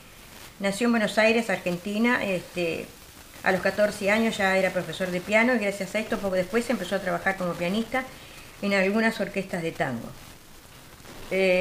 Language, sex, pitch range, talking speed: Spanish, female, 185-225 Hz, 160 wpm